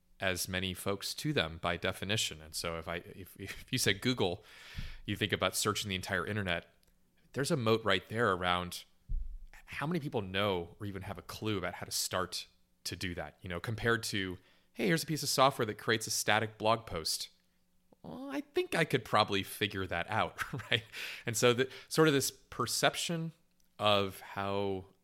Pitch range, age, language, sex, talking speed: 90-115 Hz, 30-49, English, male, 190 wpm